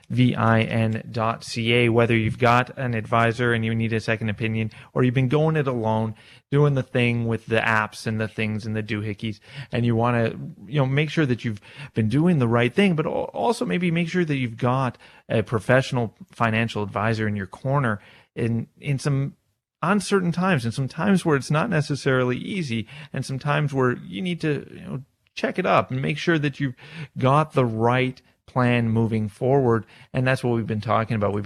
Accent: American